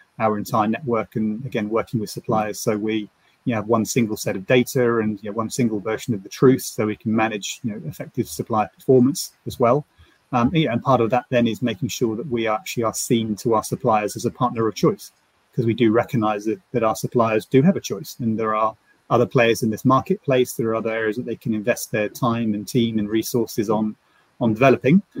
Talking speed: 215 wpm